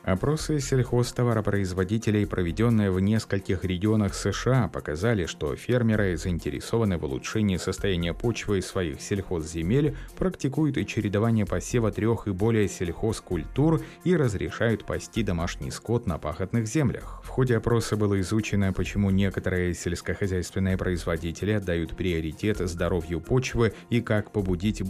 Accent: native